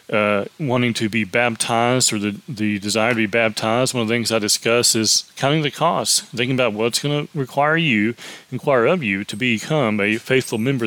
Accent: American